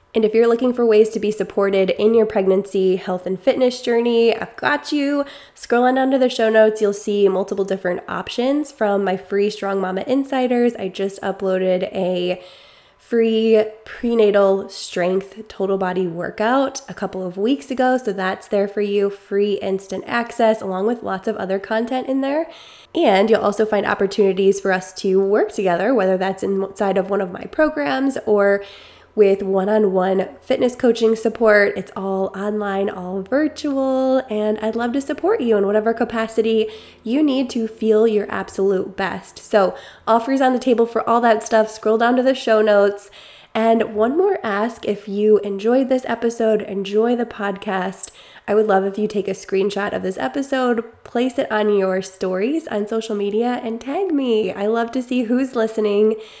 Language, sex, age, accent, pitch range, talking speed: English, female, 20-39, American, 195-235 Hz, 180 wpm